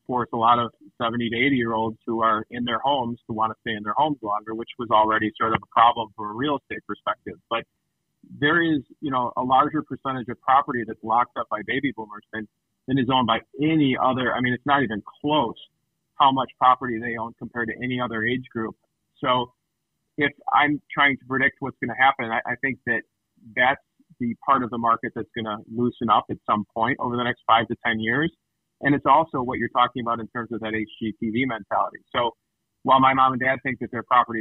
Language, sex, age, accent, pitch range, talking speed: English, male, 40-59, American, 110-130 Hz, 230 wpm